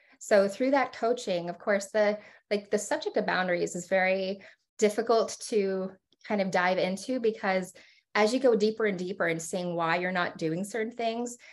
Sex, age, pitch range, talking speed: female, 20-39, 195-235 Hz, 180 wpm